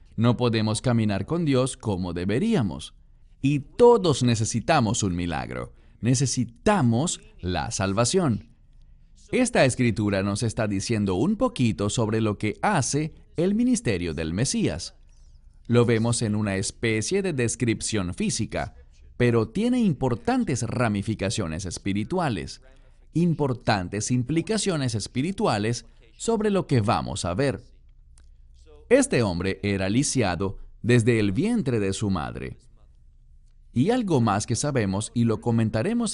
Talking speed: 115 wpm